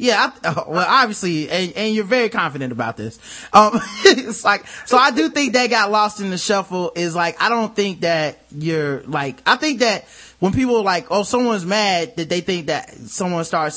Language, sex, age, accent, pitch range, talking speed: English, male, 20-39, American, 165-220 Hz, 210 wpm